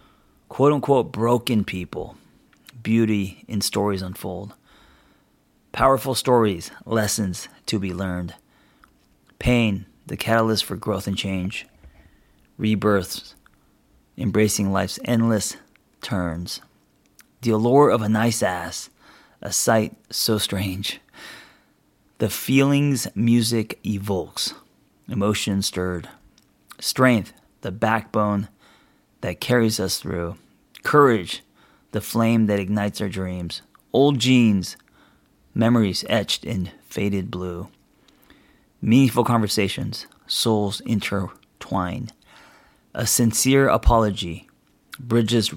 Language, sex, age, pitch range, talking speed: English, male, 30-49, 95-120 Hz, 95 wpm